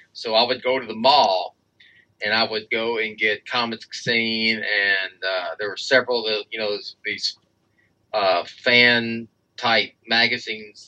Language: English